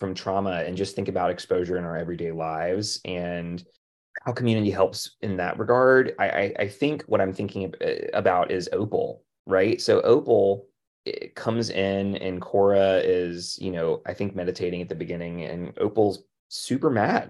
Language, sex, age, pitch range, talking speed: English, male, 30-49, 95-115 Hz, 165 wpm